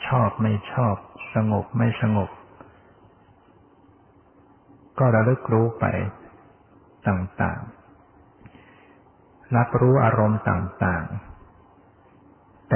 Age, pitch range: 60-79, 100-120 Hz